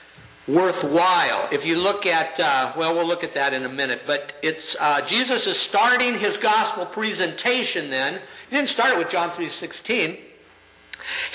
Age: 50-69